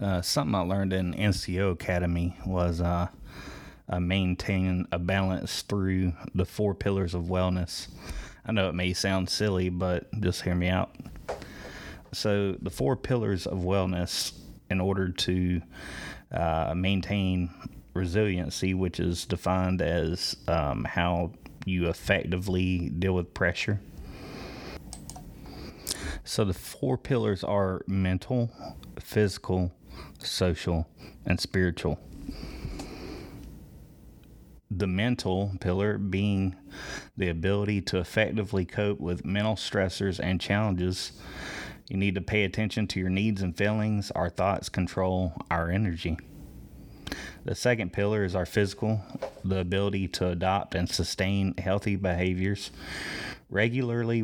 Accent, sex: American, male